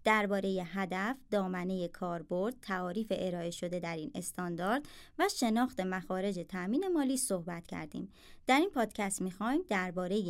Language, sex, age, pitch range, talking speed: Persian, male, 30-49, 180-230 Hz, 130 wpm